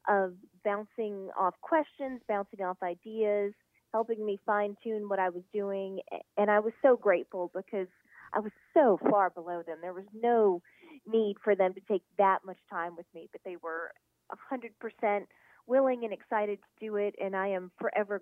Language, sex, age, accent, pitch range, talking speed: English, female, 30-49, American, 190-235 Hz, 175 wpm